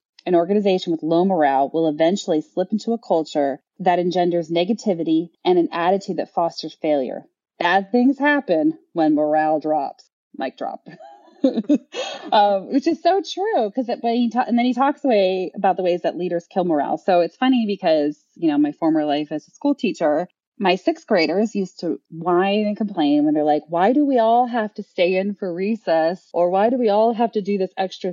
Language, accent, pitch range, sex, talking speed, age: English, American, 165-235 Hz, female, 195 wpm, 30-49